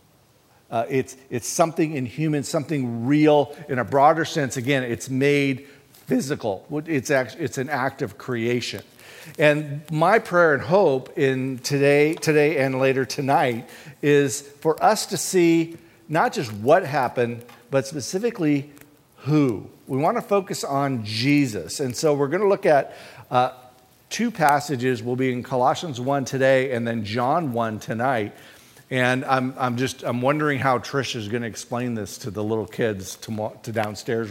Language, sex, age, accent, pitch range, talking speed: English, male, 50-69, American, 120-150 Hz, 160 wpm